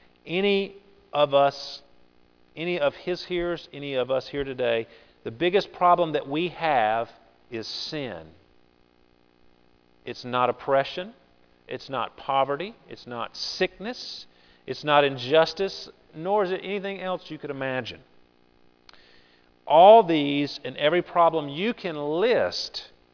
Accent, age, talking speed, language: American, 40-59, 125 wpm, English